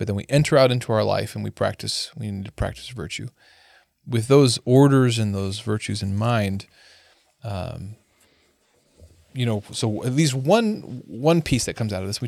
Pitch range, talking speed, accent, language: 105-130 Hz, 190 wpm, American, English